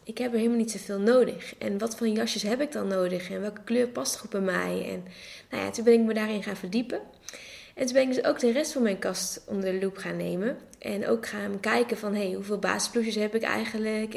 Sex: female